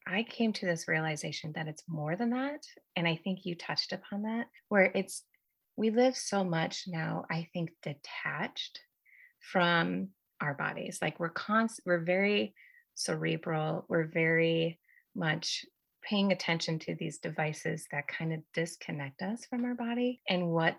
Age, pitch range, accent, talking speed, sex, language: 30-49, 160-205 Hz, American, 155 wpm, female, English